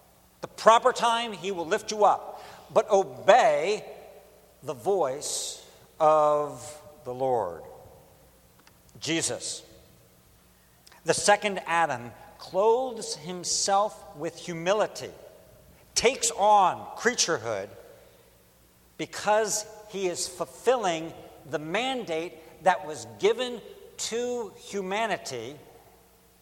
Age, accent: 60-79, American